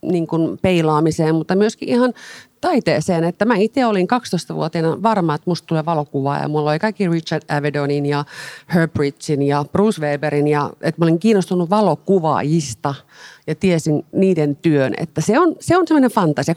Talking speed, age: 160 wpm, 40-59